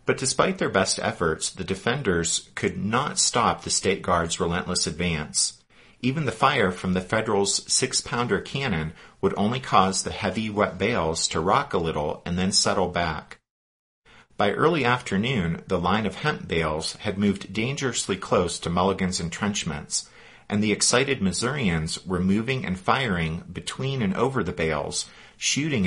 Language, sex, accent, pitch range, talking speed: English, male, American, 85-110 Hz, 155 wpm